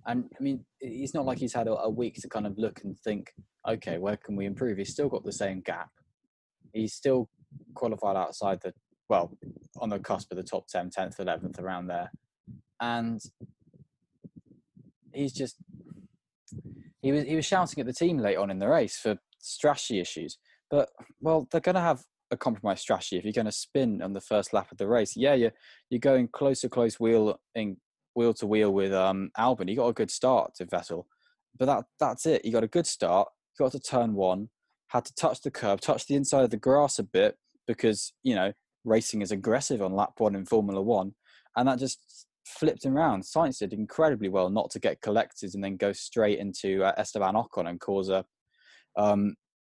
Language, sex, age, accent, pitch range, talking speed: English, male, 20-39, British, 100-135 Hz, 205 wpm